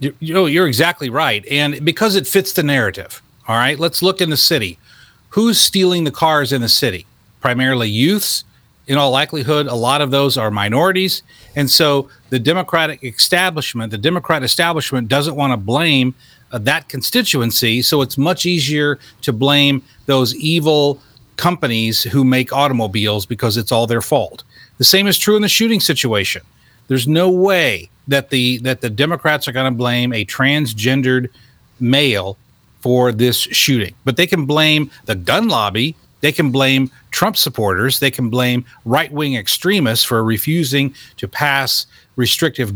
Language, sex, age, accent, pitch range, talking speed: English, male, 40-59, American, 120-160 Hz, 165 wpm